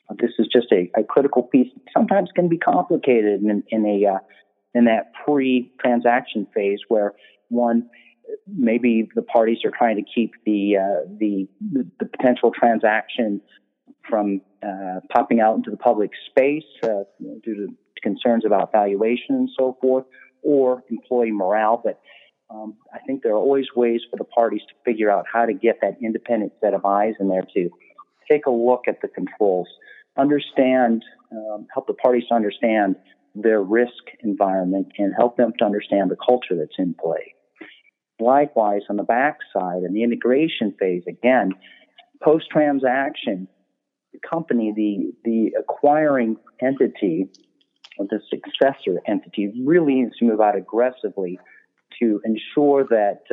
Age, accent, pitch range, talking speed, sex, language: 40-59, American, 105-130 Hz, 155 wpm, male, English